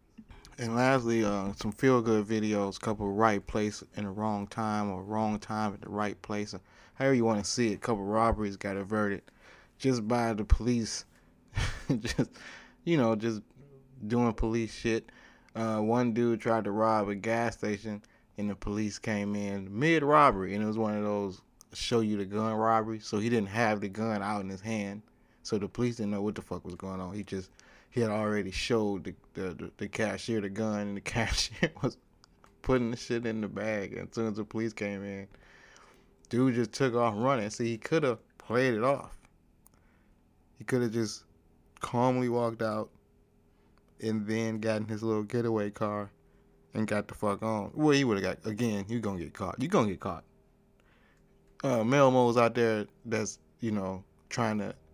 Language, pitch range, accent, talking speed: English, 100-115 Hz, American, 195 wpm